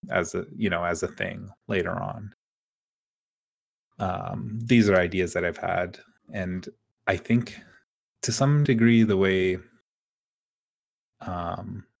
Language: English